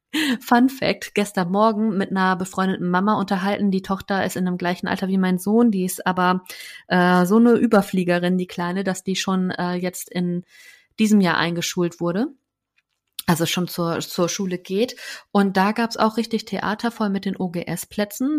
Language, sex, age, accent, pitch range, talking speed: German, female, 30-49, German, 180-220 Hz, 180 wpm